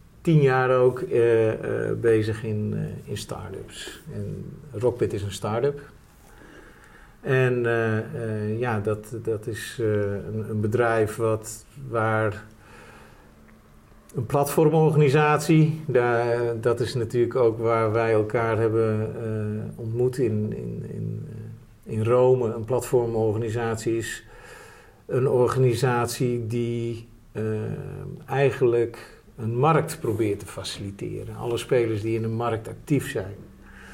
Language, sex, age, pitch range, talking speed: Dutch, male, 50-69, 110-130 Hz, 110 wpm